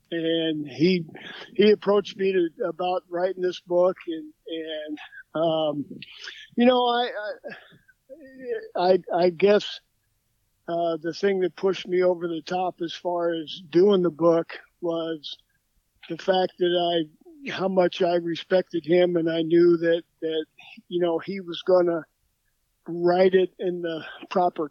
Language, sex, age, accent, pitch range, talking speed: English, male, 50-69, American, 165-185 Hz, 150 wpm